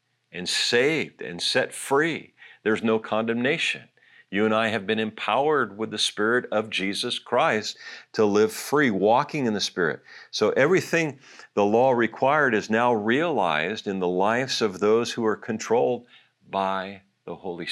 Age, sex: 50-69, male